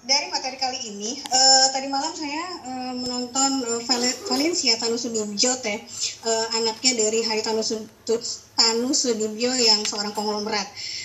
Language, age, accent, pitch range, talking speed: Indonesian, 20-39, native, 235-310 Hz, 135 wpm